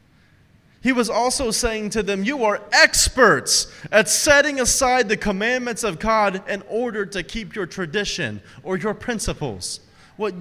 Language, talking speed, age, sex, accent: English, 150 wpm, 30-49, male, American